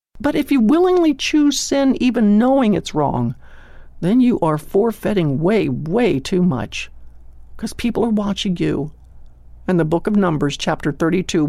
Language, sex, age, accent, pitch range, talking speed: English, male, 60-79, American, 150-230 Hz, 155 wpm